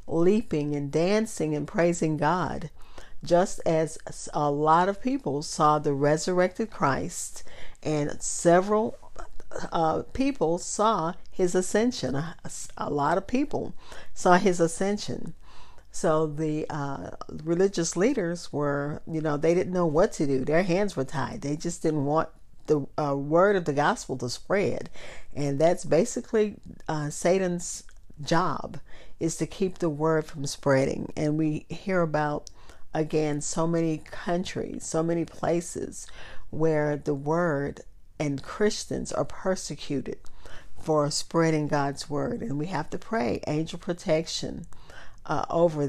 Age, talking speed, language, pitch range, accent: 50-69, 135 wpm, English, 150-180 Hz, American